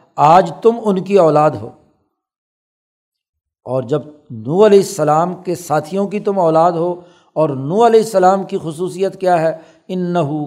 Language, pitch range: Urdu, 150-190 Hz